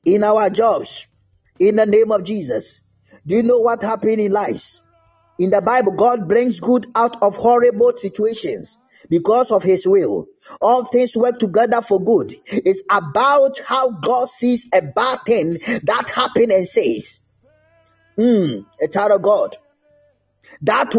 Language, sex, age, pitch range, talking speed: English, male, 30-49, 215-280 Hz, 150 wpm